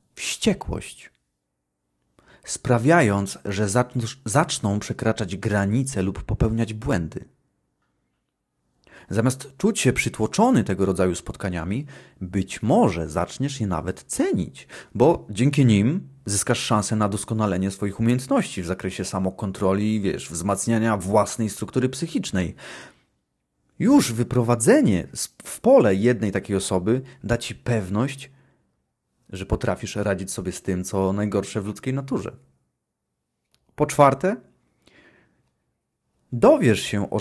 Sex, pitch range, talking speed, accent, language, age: male, 95-125 Hz, 105 wpm, native, Polish, 30-49